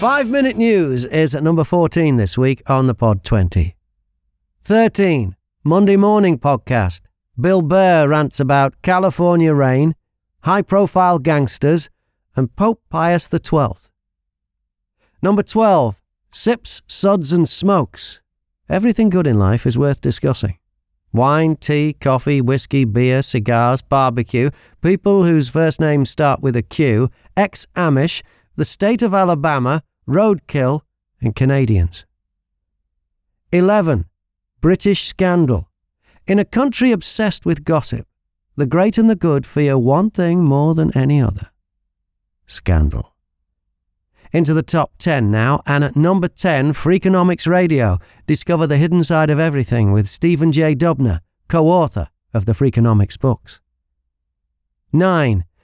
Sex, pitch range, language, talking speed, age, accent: male, 105-175 Hz, English, 120 wpm, 40-59, British